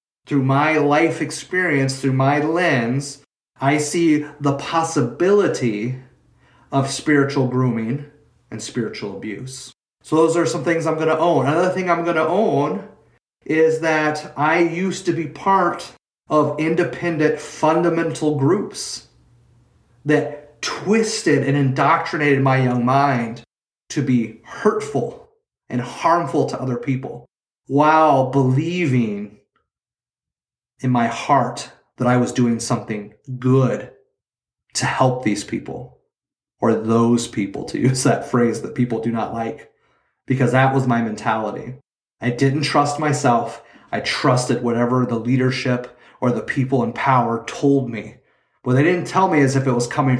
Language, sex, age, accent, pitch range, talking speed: English, male, 30-49, American, 120-150 Hz, 140 wpm